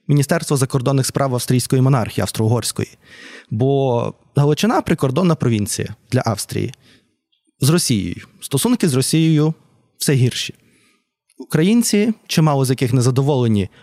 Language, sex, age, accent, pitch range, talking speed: Ukrainian, male, 20-39, native, 120-160 Hz, 115 wpm